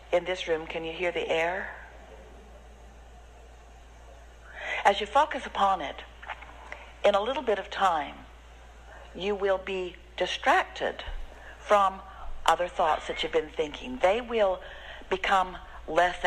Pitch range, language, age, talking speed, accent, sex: 155-205 Hz, English, 60-79, 125 wpm, American, female